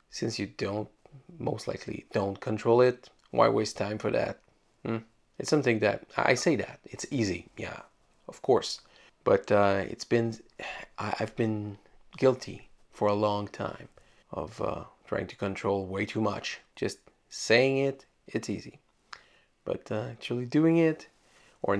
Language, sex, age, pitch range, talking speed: English, male, 30-49, 100-120 Hz, 150 wpm